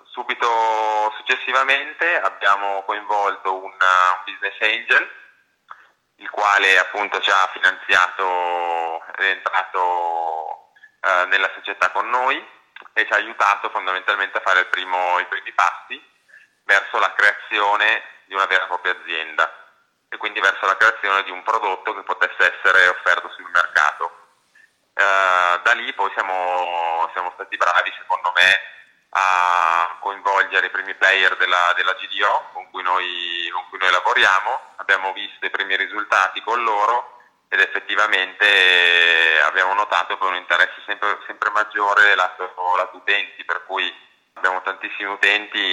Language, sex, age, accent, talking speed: Italian, male, 30-49, native, 140 wpm